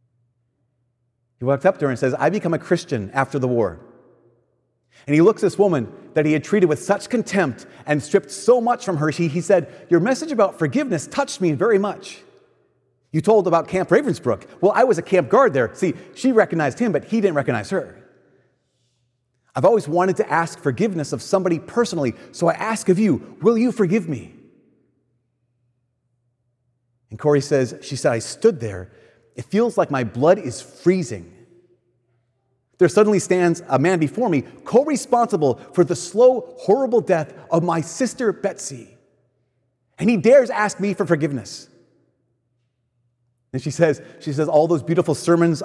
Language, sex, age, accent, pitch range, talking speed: English, male, 30-49, American, 120-185 Hz, 170 wpm